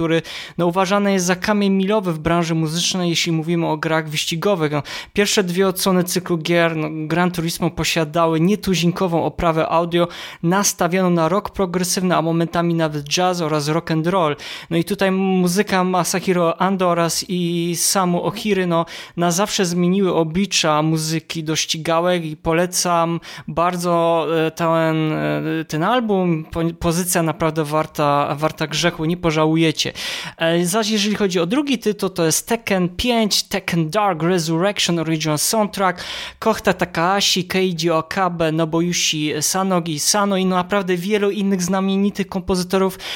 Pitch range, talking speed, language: 165-190 Hz, 140 wpm, Polish